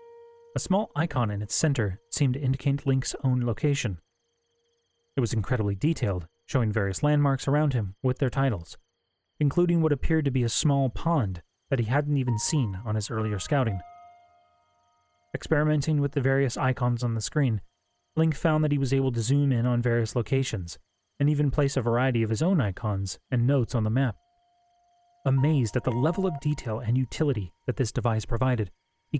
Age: 30-49